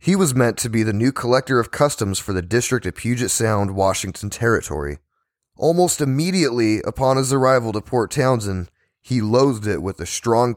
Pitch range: 100-135 Hz